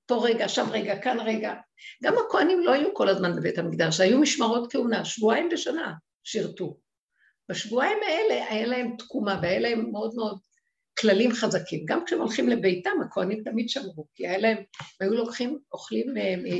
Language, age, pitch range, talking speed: Hebrew, 50-69, 190-265 Hz, 155 wpm